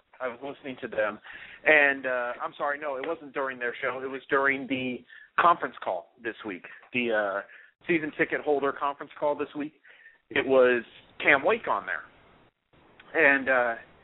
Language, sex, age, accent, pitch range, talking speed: English, male, 40-59, American, 135-170 Hz, 165 wpm